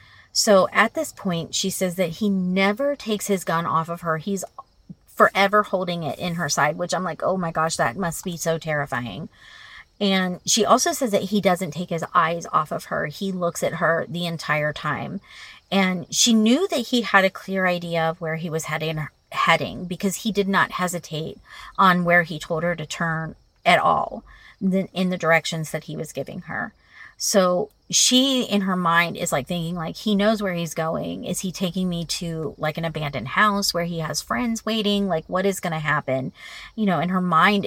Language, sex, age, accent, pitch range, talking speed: English, female, 30-49, American, 165-195 Hz, 205 wpm